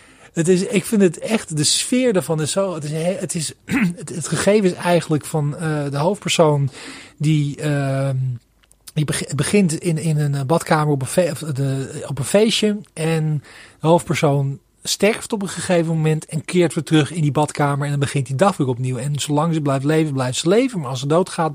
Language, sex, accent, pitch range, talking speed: Dutch, male, Dutch, 145-185 Hz, 185 wpm